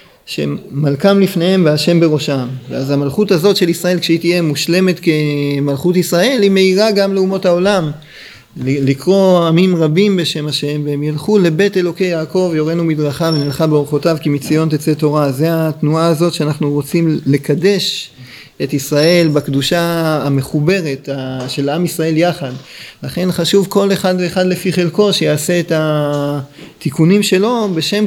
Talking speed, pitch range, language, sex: 135 wpm, 145-180 Hz, Hebrew, male